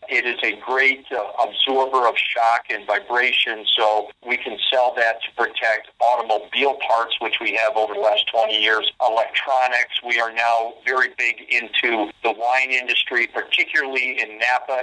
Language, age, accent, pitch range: English, 50-69, American, 110-130 Hz